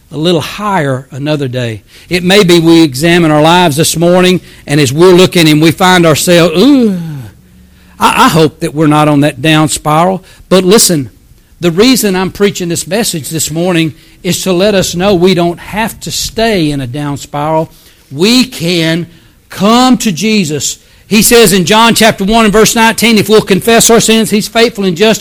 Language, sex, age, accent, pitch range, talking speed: English, male, 60-79, American, 160-225 Hz, 190 wpm